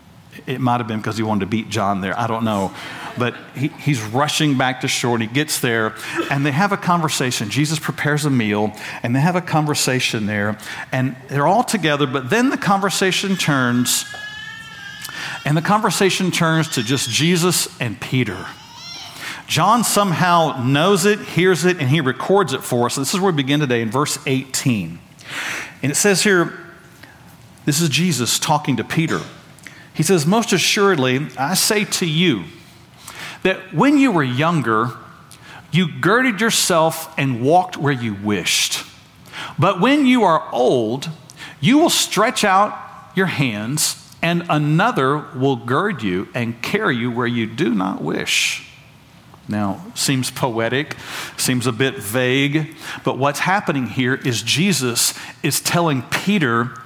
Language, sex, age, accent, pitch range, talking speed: English, male, 50-69, American, 125-175 Hz, 155 wpm